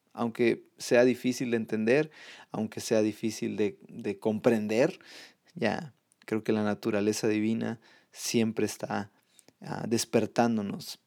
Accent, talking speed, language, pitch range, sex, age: Mexican, 120 wpm, Spanish, 110-125 Hz, male, 30-49